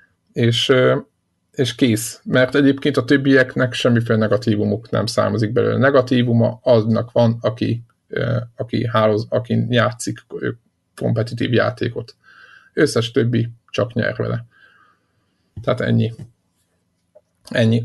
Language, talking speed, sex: Hungarian, 105 wpm, male